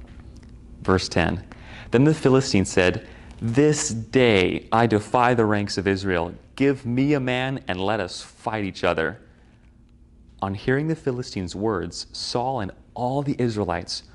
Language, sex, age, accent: English, male, 30-49, American